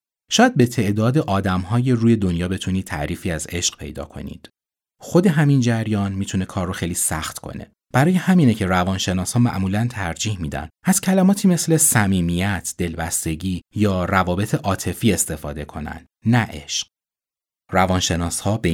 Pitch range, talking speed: 80-120 Hz, 145 wpm